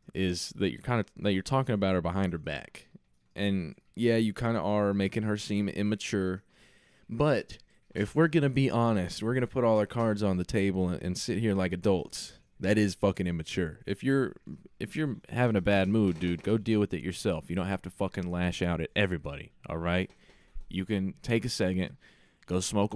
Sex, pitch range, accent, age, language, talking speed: male, 90-110 Hz, American, 20-39, English, 210 wpm